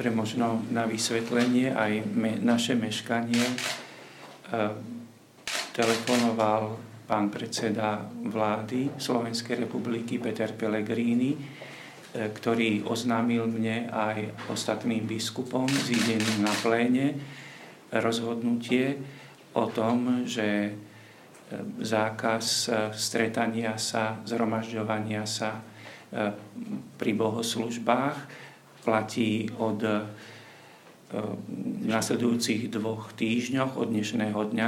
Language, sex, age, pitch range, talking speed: Slovak, male, 50-69, 110-120 Hz, 85 wpm